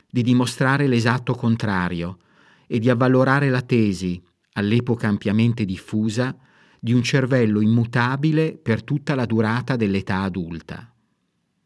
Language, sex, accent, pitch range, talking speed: Italian, male, native, 100-125 Hz, 115 wpm